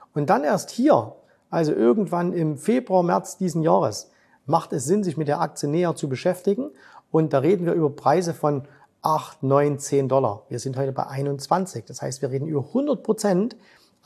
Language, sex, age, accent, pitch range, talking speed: German, male, 50-69, German, 140-185 Hz, 185 wpm